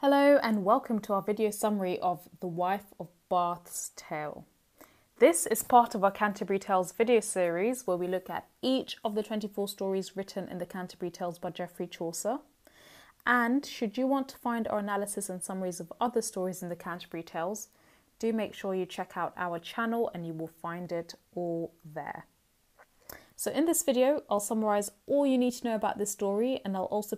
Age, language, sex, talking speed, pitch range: 20-39, English, female, 195 wpm, 180-220 Hz